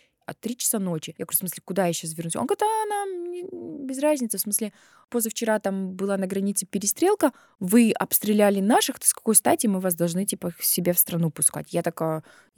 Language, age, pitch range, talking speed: Russian, 20-39, 175-245 Hz, 205 wpm